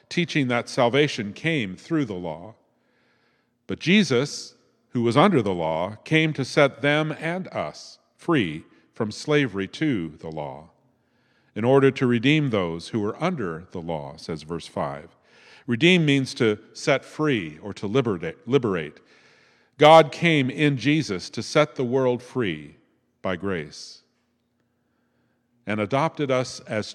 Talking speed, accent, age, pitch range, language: 140 wpm, American, 50-69, 100-145 Hz, English